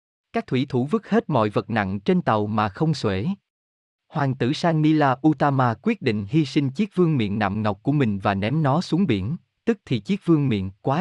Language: Vietnamese